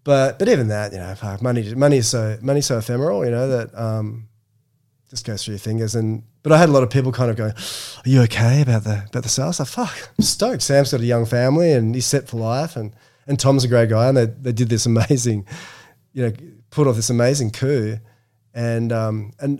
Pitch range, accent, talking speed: 115-135 Hz, Australian, 245 wpm